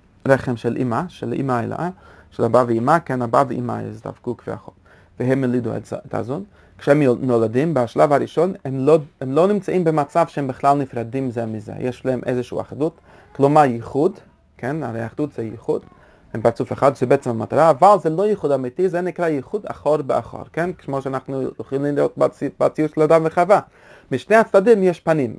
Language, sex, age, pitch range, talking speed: Hebrew, male, 30-49, 120-150 Hz, 180 wpm